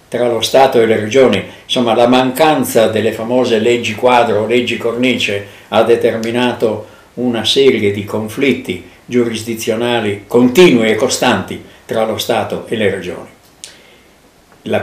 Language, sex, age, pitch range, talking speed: Italian, male, 60-79, 110-125 Hz, 135 wpm